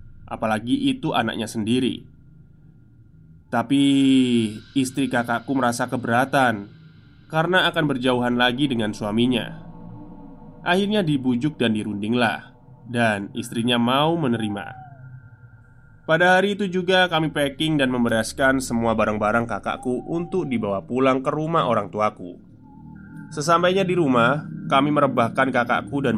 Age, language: 20-39, Indonesian